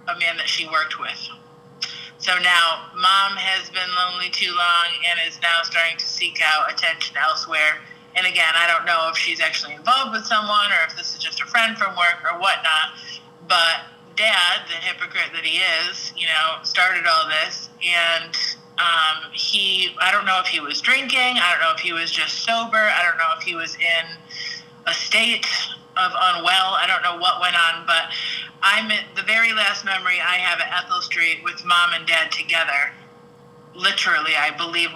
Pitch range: 165-190 Hz